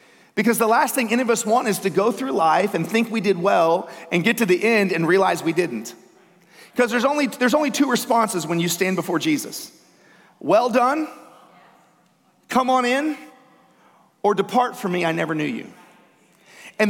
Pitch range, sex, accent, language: 175-235 Hz, male, American, English